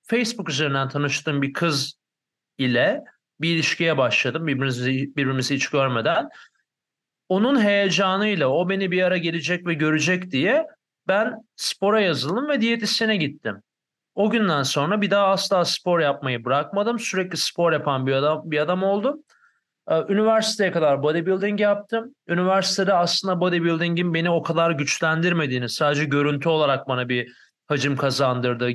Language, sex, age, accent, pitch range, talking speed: Turkish, male, 40-59, native, 140-205 Hz, 135 wpm